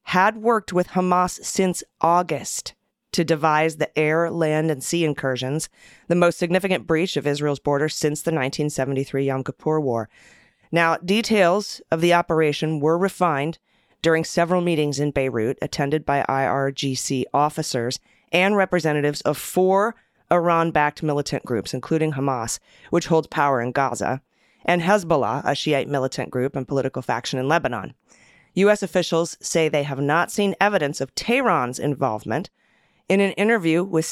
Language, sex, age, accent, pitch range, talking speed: English, female, 30-49, American, 140-170 Hz, 145 wpm